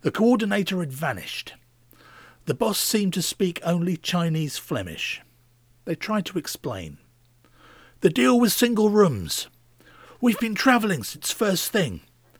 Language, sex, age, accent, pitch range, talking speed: English, male, 50-69, British, 115-170 Hz, 130 wpm